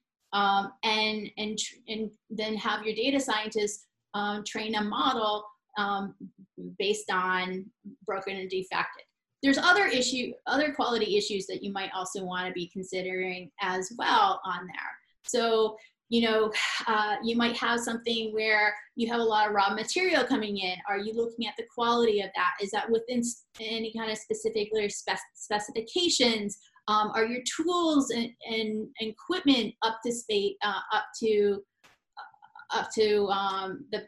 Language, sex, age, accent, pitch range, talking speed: English, female, 30-49, American, 200-235 Hz, 155 wpm